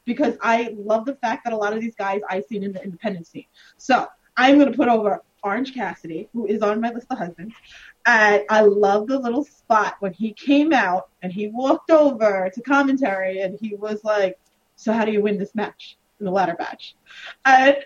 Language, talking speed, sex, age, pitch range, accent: English, 215 wpm, female, 20-39, 210-310 Hz, American